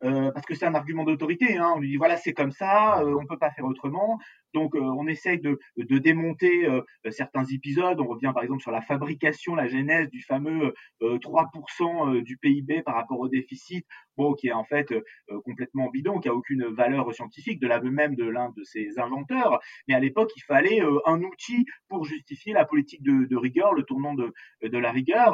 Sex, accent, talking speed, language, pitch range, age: male, French, 220 wpm, French, 130-210 Hz, 30-49